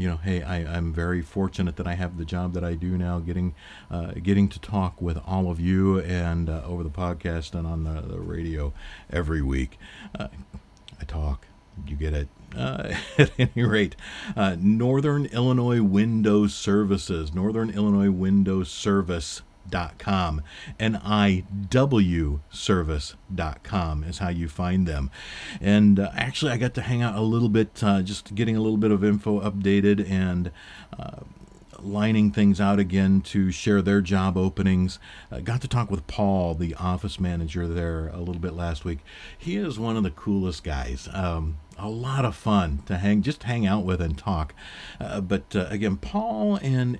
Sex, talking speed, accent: male, 175 wpm, American